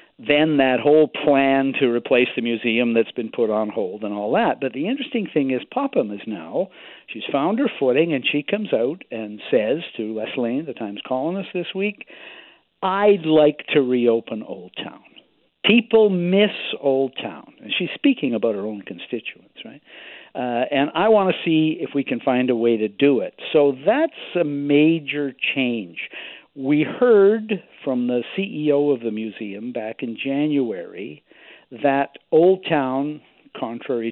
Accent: American